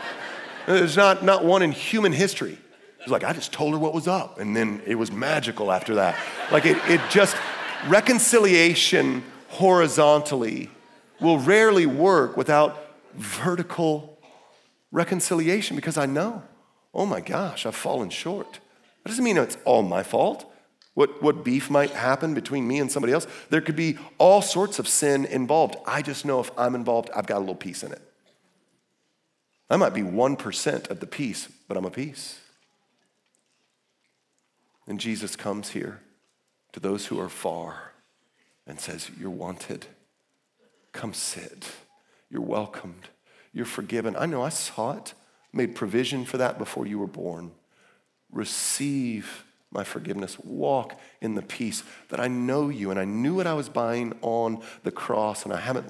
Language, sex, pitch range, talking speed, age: English, male, 110-170 Hz, 160 wpm, 40-59